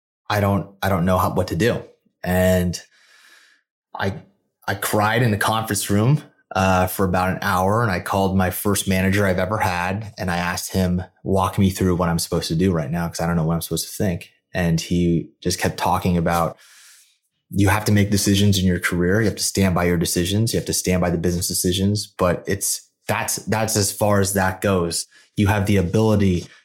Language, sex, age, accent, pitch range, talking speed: English, male, 20-39, American, 90-100 Hz, 215 wpm